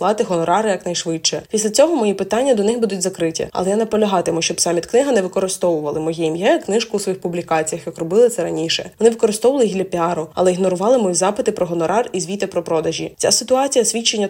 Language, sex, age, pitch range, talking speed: Ukrainian, female, 20-39, 175-225 Hz, 200 wpm